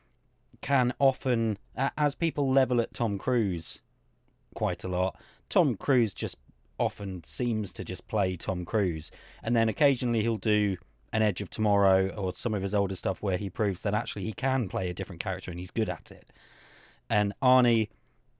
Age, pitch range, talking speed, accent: 30-49, 95-125 Hz, 175 wpm, British